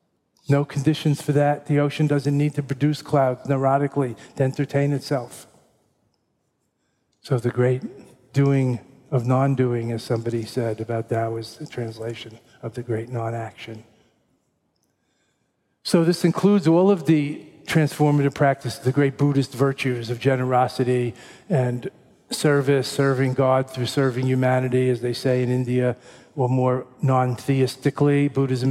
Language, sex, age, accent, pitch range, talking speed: English, male, 50-69, American, 125-135 Hz, 130 wpm